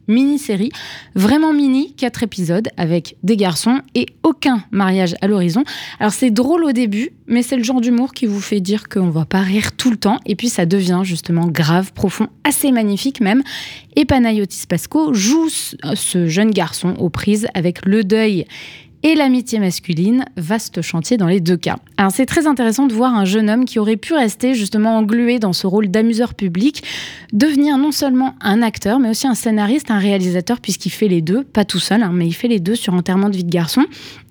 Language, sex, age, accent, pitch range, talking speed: French, female, 20-39, French, 190-240 Hz, 205 wpm